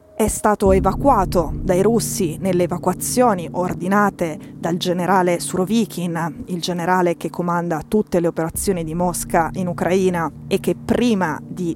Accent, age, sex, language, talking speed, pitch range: native, 20-39, female, Italian, 135 wpm, 175-205 Hz